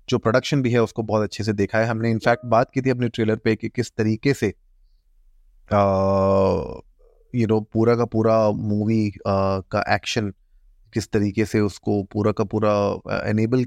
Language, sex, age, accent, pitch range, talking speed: Hindi, male, 30-49, native, 105-120 Hz, 165 wpm